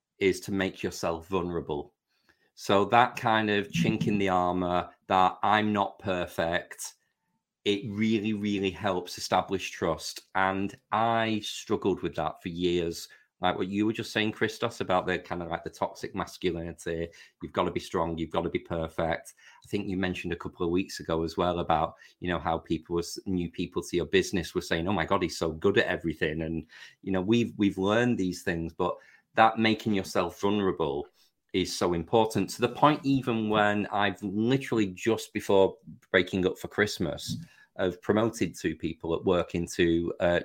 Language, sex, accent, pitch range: English, male, British, 85-105 Hz